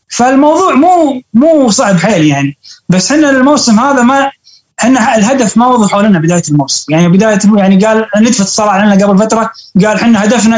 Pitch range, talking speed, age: 185-245 Hz, 170 wpm, 20-39